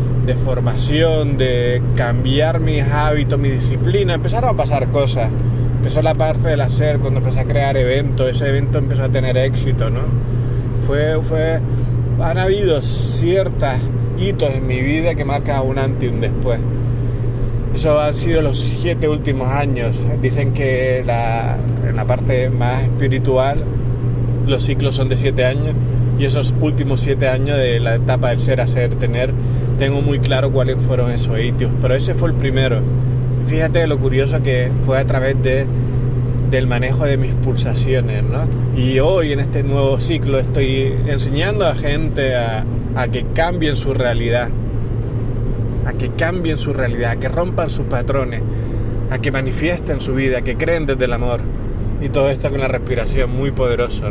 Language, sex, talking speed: Spanish, male, 165 wpm